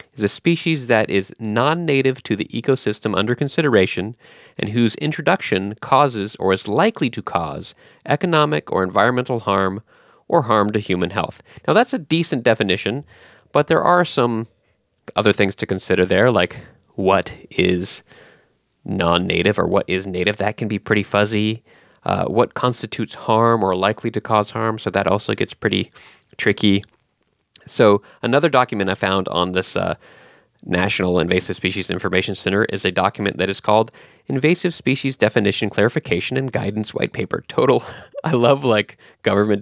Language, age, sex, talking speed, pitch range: English, 30-49, male, 155 wpm, 100-125 Hz